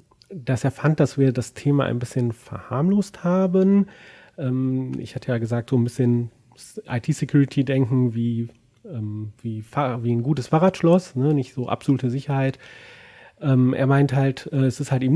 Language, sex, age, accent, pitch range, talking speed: German, male, 30-49, German, 115-145 Hz, 155 wpm